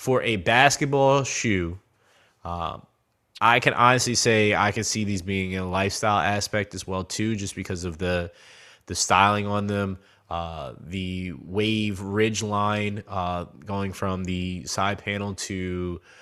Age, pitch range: 20-39, 95-110 Hz